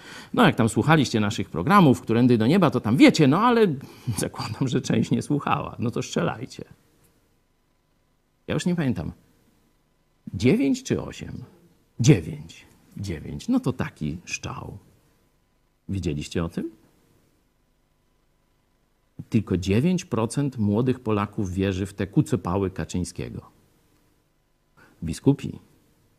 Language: Polish